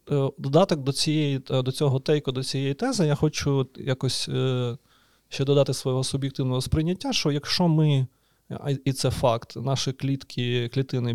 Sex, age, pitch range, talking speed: male, 30-49, 125-150 Hz, 140 wpm